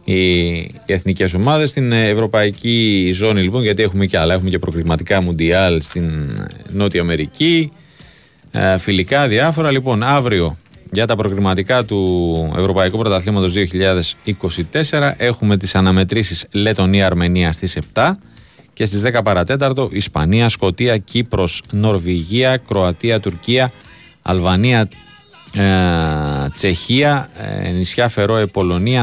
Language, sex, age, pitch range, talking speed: Greek, male, 30-49, 90-115 Hz, 105 wpm